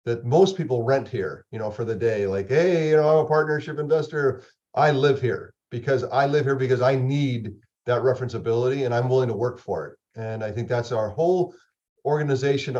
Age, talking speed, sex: 40-59, 210 wpm, male